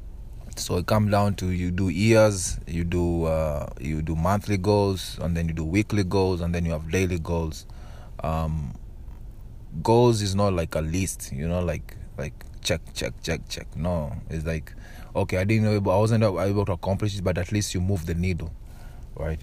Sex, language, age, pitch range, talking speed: male, English, 20-39, 85-110 Hz, 200 wpm